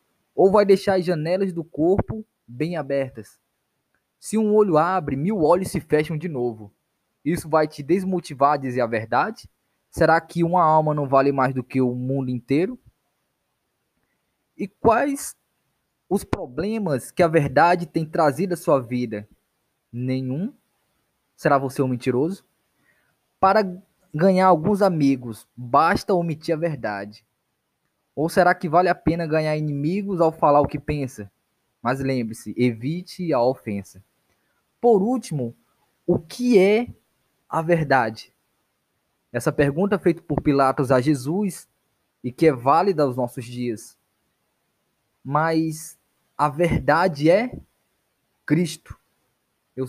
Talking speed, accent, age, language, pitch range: 130 wpm, Brazilian, 20-39, Portuguese, 125-175 Hz